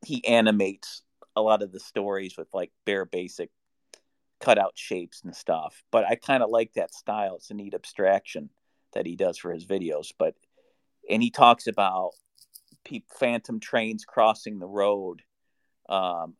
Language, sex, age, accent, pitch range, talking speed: English, male, 40-59, American, 100-130 Hz, 160 wpm